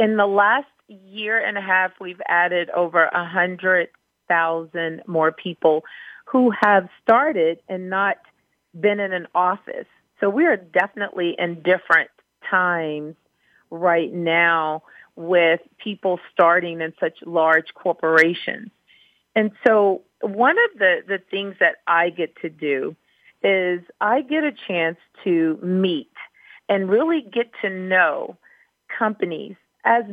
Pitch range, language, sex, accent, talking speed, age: 170-210 Hz, English, female, American, 125 wpm, 40-59